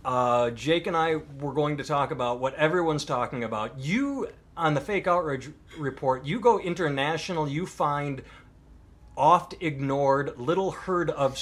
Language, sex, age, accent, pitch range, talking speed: English, male, 30-49, American, 120-155 Hz, 150 wpm